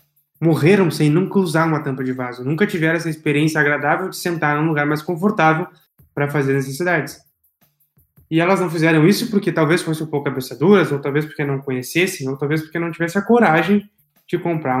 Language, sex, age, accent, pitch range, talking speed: Portuguese, male, 20-39, Brazilian, 145-180 Hz, 195 wpm